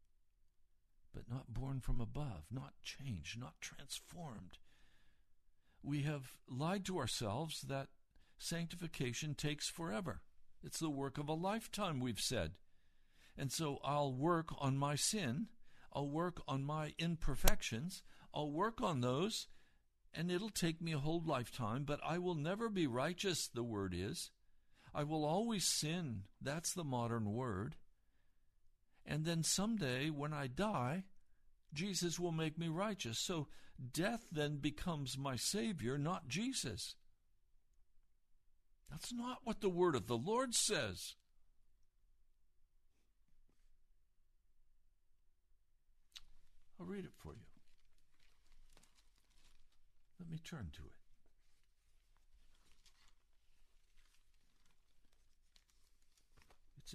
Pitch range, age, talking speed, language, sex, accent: 120-170 Hz, 60-79, 110 wpm, English, male, American